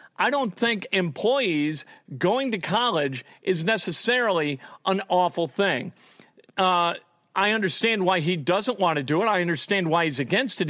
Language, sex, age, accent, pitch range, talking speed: English, male, 50-69, American, 165-200 Hz, 155 wpm